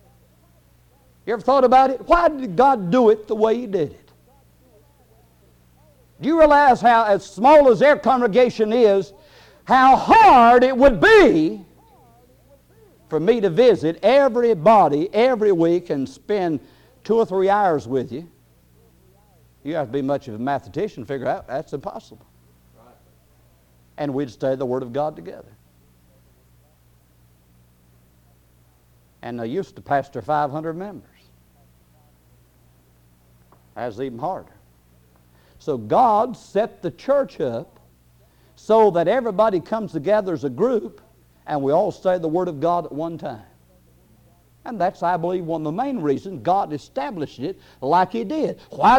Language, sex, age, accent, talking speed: English, male, 60-79, American, 145 wpm